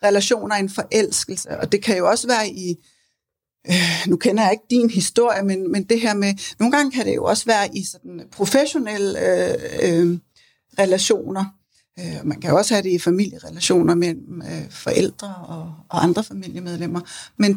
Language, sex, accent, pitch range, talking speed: Danish, female, native, 195-240 Hz, 180 wpm